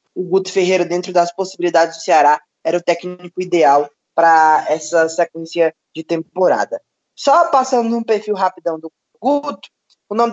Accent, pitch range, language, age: Brazilian, 175-220 Hz, Portuguese, 20-39